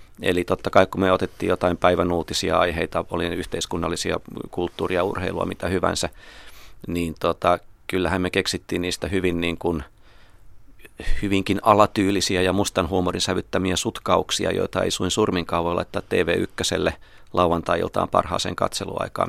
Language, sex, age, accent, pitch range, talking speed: Finnish, male, 30-49, native, 85-100 Hz, 135 wpm